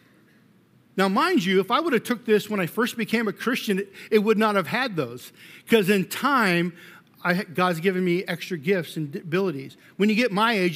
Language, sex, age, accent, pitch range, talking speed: English, male, 50-69, American, 190-245 Hz, 205 wpm